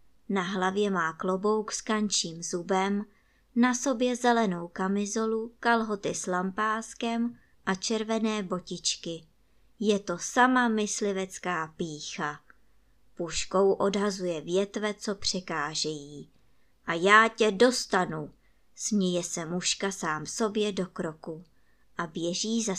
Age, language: 20-39, Czech